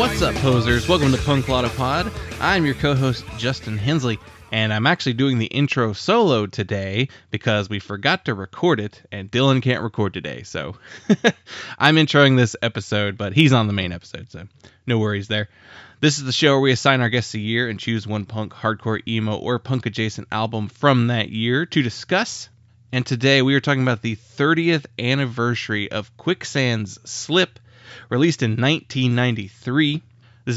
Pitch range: 110-135 Hz